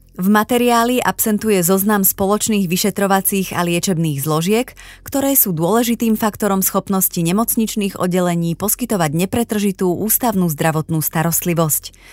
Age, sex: 30-49, female